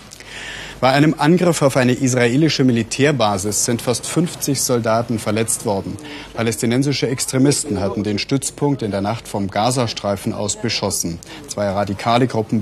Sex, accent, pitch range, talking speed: male, German, 105-130 Hz, 135 wpm